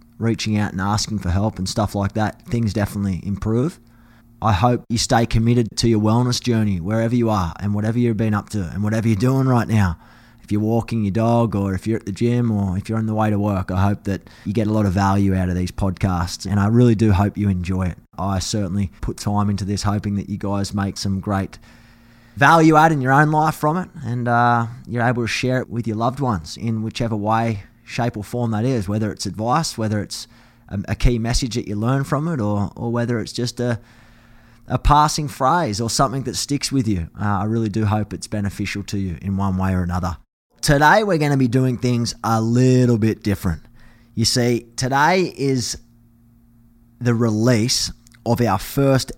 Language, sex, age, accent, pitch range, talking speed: English, male, 20-39, Australian, 100-120 Hz, 220 wpm